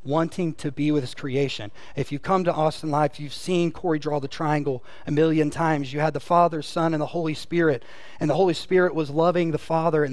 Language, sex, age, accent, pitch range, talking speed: English, male, 30-49, American, 145-175 Hz, 230 wpm